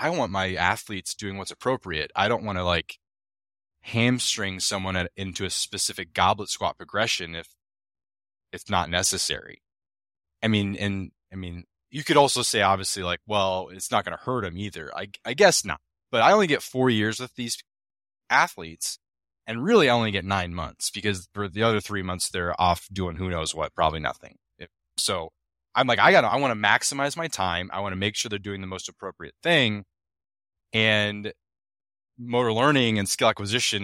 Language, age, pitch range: English, 20-39, 90-110 Hz